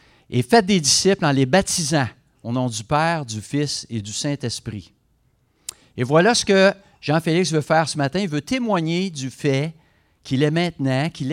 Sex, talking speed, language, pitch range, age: male, 180 wpm, French, 125-175 Hz, 50-69